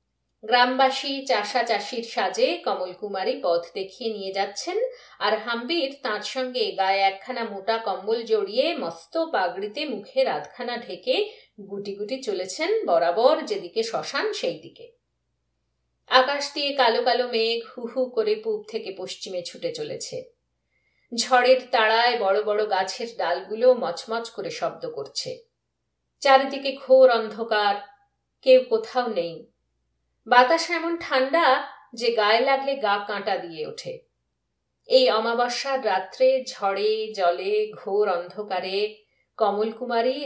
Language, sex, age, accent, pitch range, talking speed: Bengali, female, 50-69, native, 215-330 Hz, 105 wpm